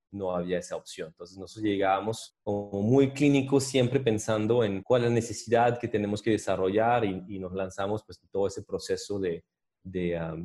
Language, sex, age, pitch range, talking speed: Spanish, male, 30-49, 100-120 Hz, 185 wpm